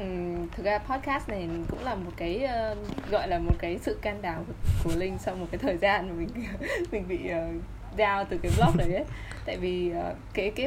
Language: Vietnamese